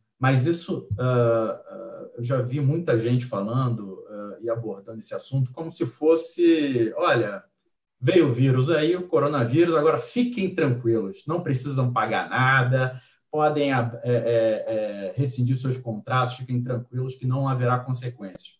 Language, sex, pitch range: Portuguese, male, 115-135 Hz